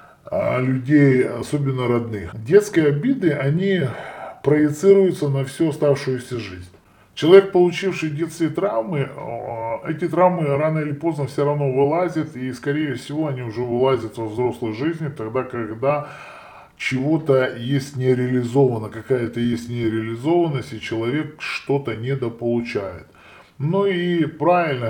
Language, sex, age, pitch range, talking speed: Russian, female, 10-29, 115-155 Hz, 115 wpm